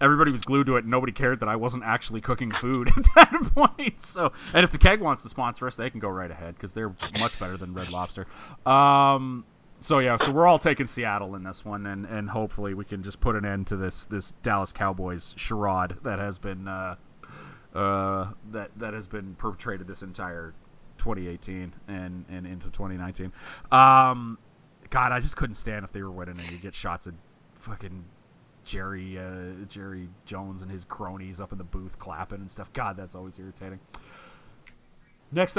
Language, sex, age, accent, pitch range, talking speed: English, male, 30-49, American, 95-125 Hz, 195 wpm